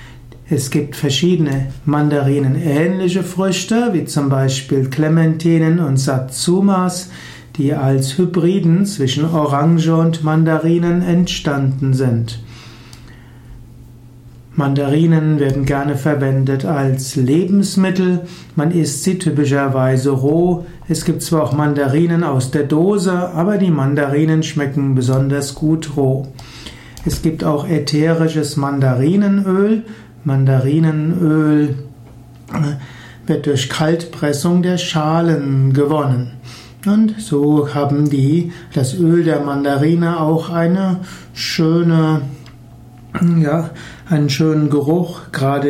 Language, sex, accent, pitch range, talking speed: German, male, German, 135-165 Hz, 95 wpm